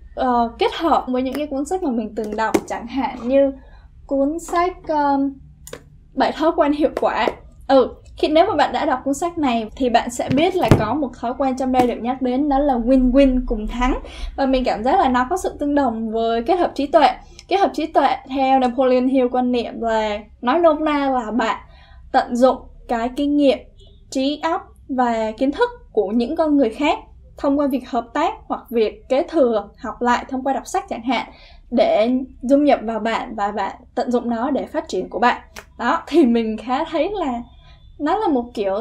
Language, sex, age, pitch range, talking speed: Vietnamese, female, 10-29, 245-300 Hz, 215 wpm